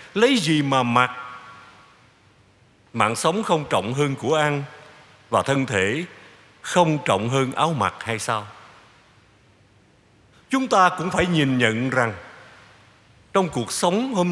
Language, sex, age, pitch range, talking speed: Vietnamese, male, 60-79, 110-160 Hz, 135 wpm